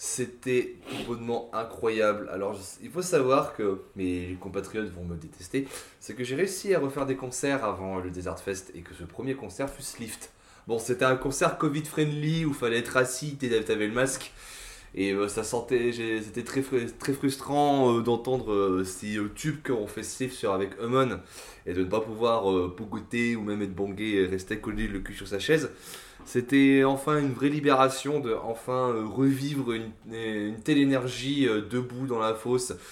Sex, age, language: male, 20-39, French